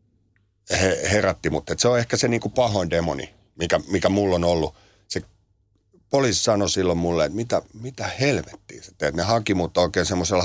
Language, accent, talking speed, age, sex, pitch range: Finnish, native, 165 wpm, 60-79, male, 85-105 Hz